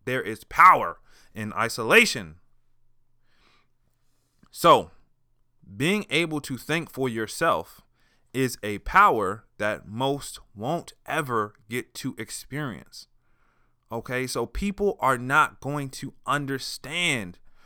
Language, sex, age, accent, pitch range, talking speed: English, male, 30-49, American, 115-150 Hz, 100 wpm